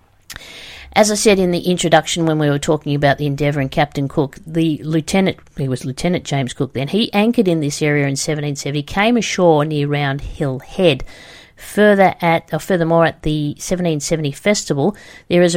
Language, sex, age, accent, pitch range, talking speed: English, female, 50-69, Australian, 145-170 Hz, 180 wpm